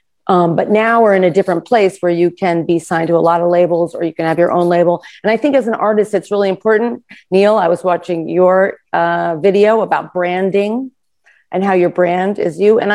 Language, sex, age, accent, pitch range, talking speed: English, female, 40-59, American, 170-205 Hz, 230 wpm